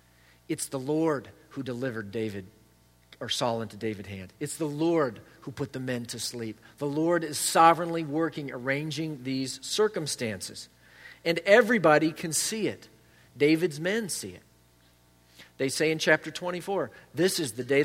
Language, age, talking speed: English, 40-59, 155 wpm